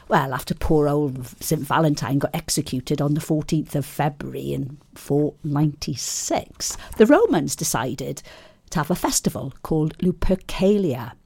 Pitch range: 140-180 Hz